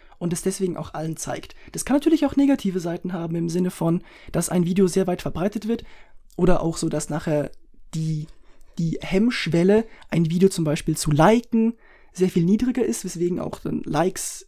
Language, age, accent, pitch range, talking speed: German, 20-39, German, 160-205 Hz, 185 wpm